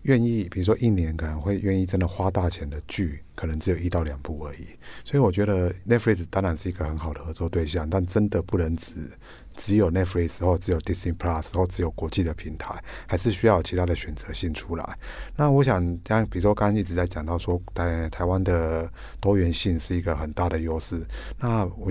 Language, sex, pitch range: Chinese, male, 85-100 Hz